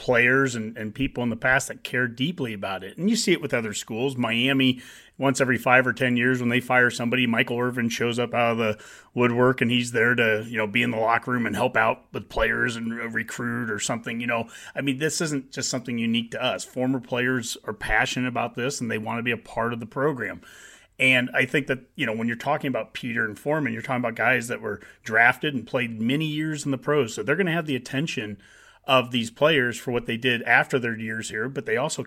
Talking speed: 250 wpm